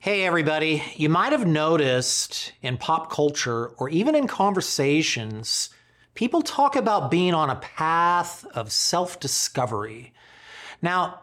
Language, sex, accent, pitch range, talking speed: English, male, American, 125-170 Hz, 125 wpm